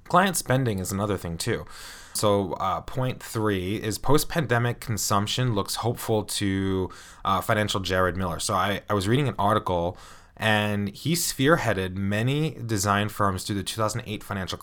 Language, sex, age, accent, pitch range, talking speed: English, male, 20-39, American, 95-120 Hz, 155 wpm